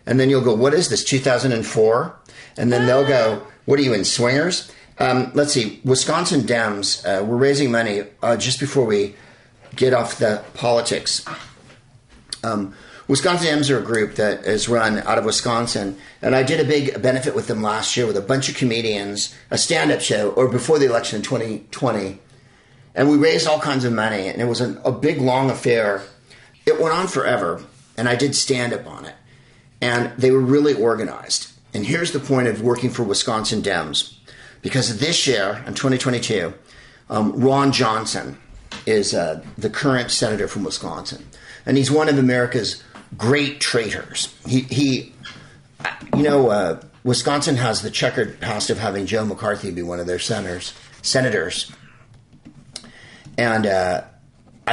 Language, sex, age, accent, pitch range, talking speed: English, male, 50-69, American, 110-135 Hz, 170 wpm